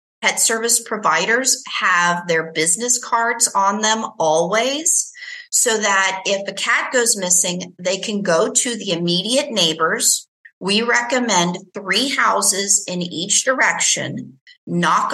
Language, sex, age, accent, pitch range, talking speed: English, female, 40-59, American, 180-230 Hz, 125 wpm